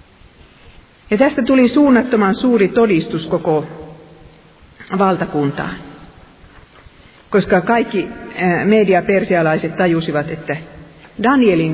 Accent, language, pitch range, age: native, Finnish, 155-210 Hz, 50-69